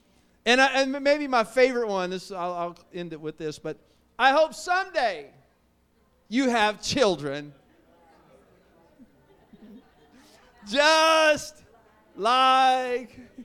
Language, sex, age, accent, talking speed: English, male, 50-69, American, 95 wpm